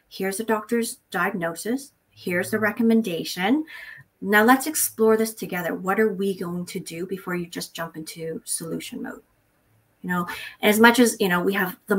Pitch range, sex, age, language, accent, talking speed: 180-220 Hz, female, 30-49, English, American, 175 wpm